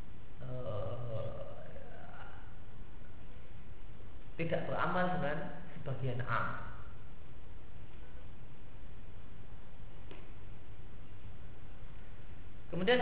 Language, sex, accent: Indonesian, male, native